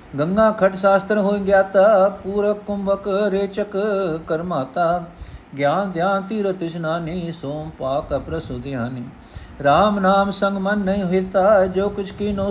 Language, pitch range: Punjabi, 130-175 Hz